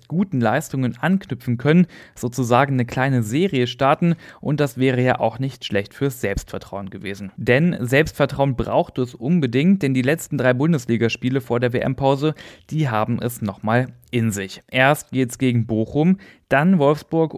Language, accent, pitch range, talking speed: German, German, 115-145 Hz, 155 wpm